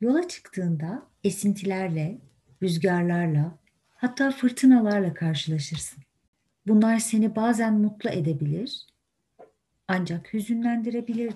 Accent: native